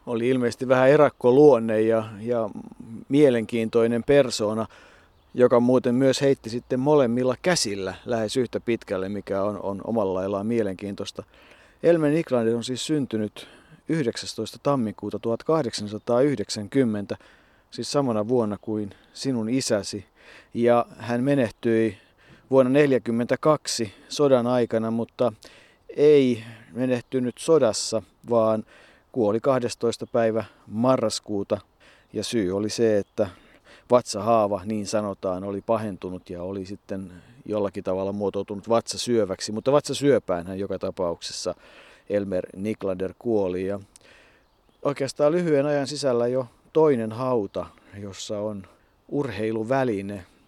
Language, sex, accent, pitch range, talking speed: Finnish, male, native, 105-125 Hz, 105 wpm